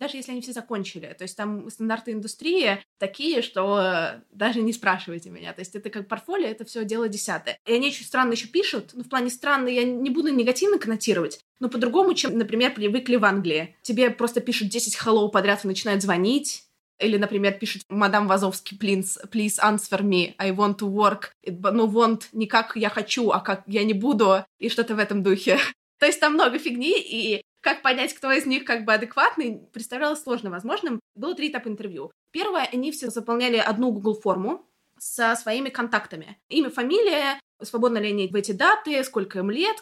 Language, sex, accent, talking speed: Russian, female, native, 195 wpm